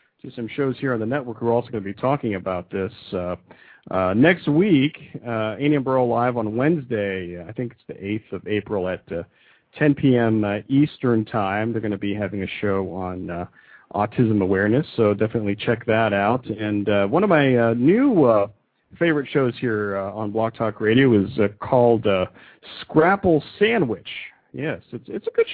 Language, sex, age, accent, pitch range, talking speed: English, male, 50-69, American, 105-135 Hz, 190 wpm